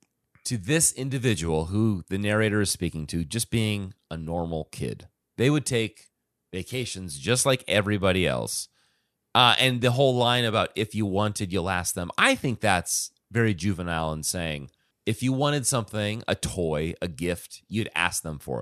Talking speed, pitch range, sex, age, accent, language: 170 wpm, 85-120 Hz, male, 30-49, American, English